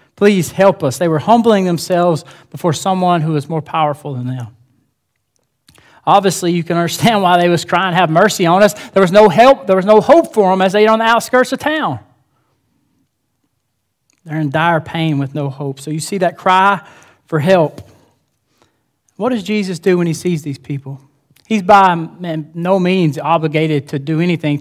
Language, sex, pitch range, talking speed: English, male, 145-185 Hz, 185 wpm